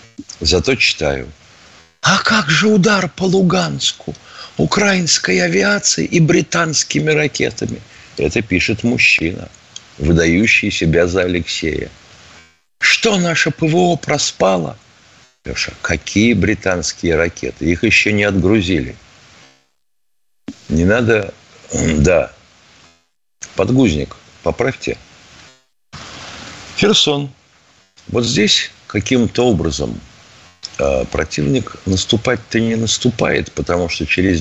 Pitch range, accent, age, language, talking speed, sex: 90-130 Hz, native, 50-69, Russian, 85 wpm, male